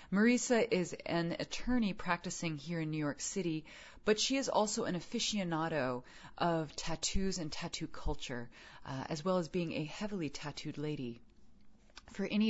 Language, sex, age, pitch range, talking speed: English, female, 30-49, 145-175 Hz, 155 wpm